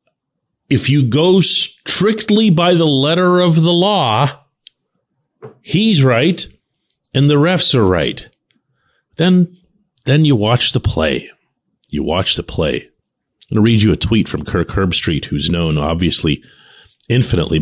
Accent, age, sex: American, 50-69, male